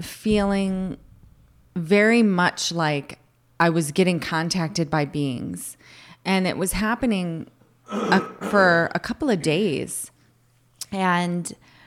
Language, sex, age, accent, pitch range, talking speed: English, female, 20-39, American, 150-190 Hz, 100 wpm